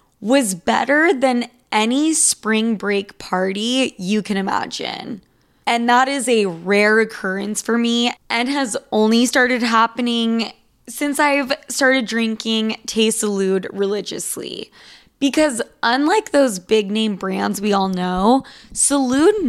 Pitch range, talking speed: 205-250 Hz, 125 wpm